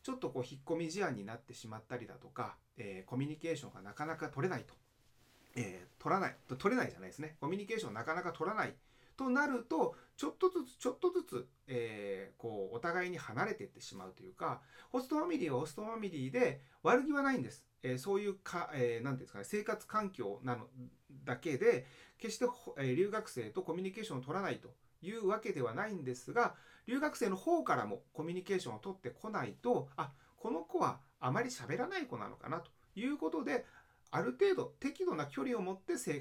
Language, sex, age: Japanese, male, 30-49